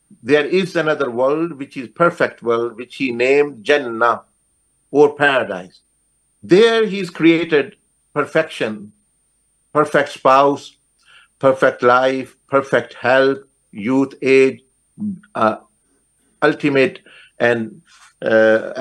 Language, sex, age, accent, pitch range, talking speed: Danish, male, 50-69, Indian, 125-160 Hz, 95 wpm